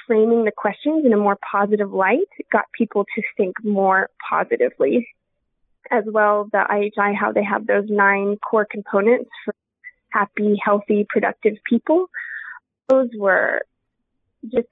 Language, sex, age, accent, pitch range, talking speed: English, female, 20-39, American, 205-235 Hz, 135 wpm